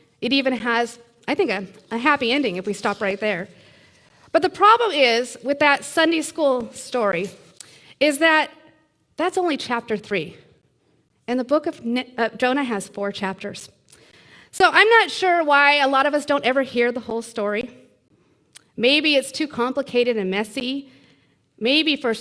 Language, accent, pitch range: English, American, 210-295 Hz